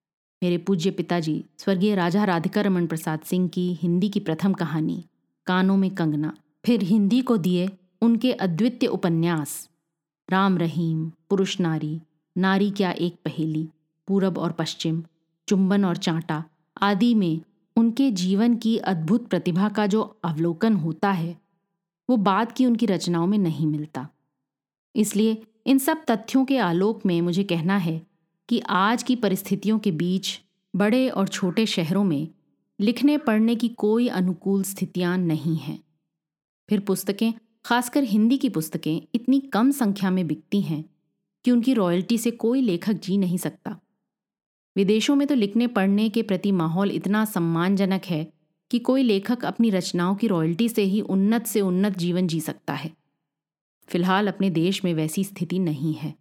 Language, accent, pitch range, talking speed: Hindi, native, 165-215 Hz, 155 wpm